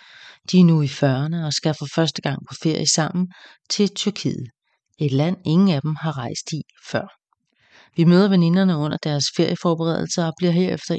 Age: 40-59